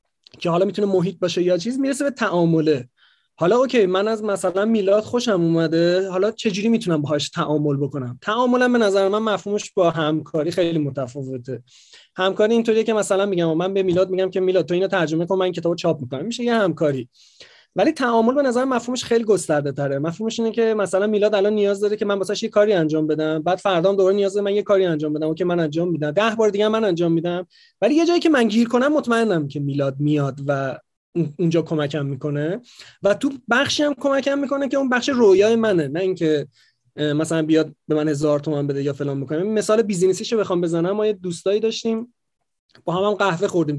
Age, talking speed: 30-49, 210 wpm